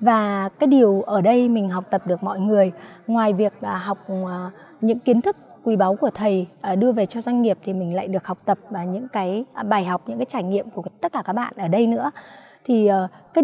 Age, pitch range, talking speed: 20-39, 195-265 Hz, 230 wpm